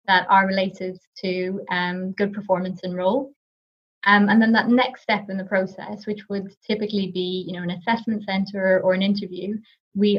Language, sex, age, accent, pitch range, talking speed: English, female, 20-39, British, 185-205 Hz, 185 wpm